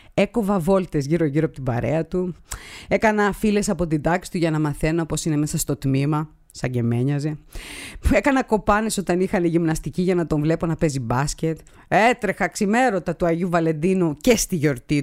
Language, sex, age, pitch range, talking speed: Greek, female, 30-49, 150-220 Hz, 175 wpm